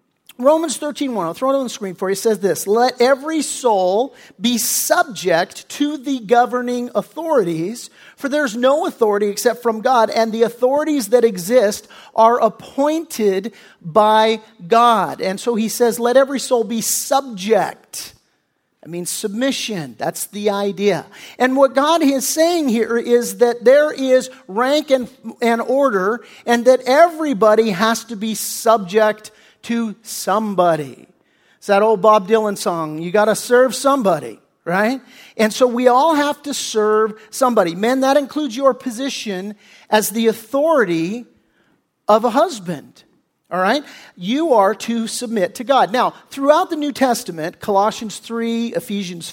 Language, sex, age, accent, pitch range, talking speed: English, male, 40-59, American, 210-255 Hz, 150 wpm